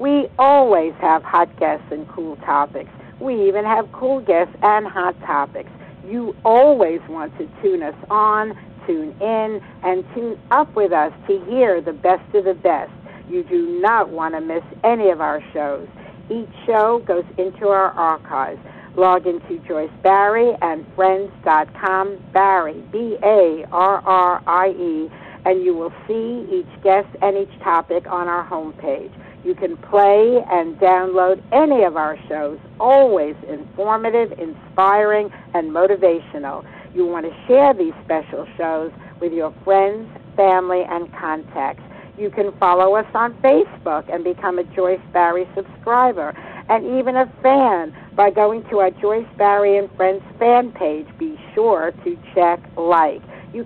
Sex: female